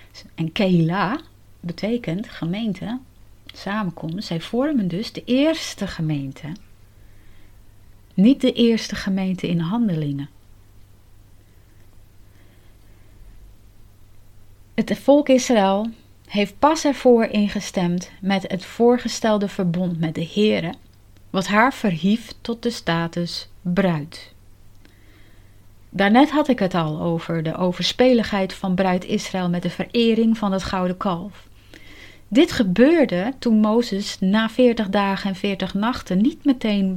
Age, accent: 30-49, Dutch